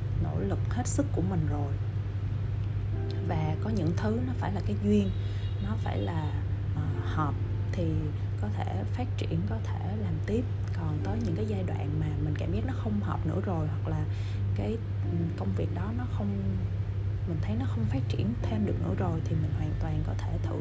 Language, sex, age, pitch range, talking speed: Vietnamese, female, 20-39, 95-100 Hz, 200 wpm